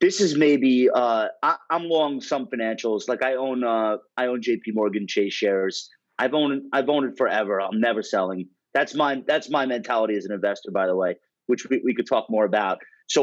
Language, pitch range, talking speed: English, 115-185 Hz, 210 wpm